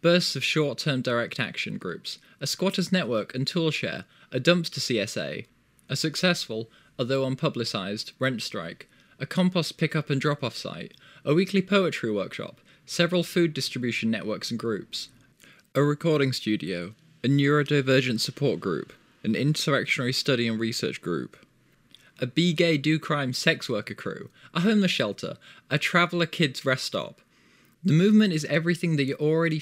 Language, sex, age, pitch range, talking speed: English, male, 20-39, 130-165 Hz, 145 wpm